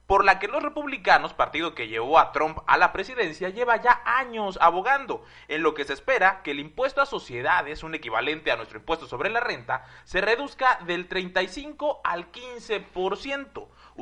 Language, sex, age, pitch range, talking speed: Spanish, male, 30-49, 155-250 Hz, 175 wpm